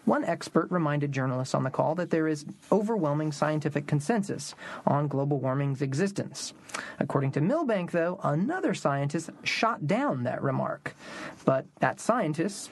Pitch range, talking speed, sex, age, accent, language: 145-190 Hz, 140 wpm, male, 40-59, American, English